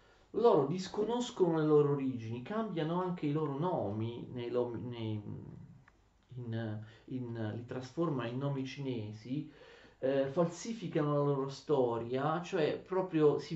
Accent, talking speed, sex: native, 100 wpm, male